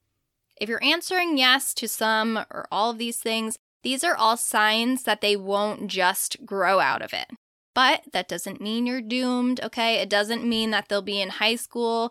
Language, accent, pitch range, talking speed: English, American, 200-250 Hz, 195 wpm